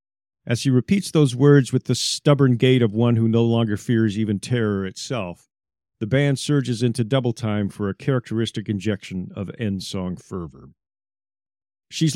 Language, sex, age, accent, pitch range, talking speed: English, male, 50-69, American, 105-135 Hz, 160 wpm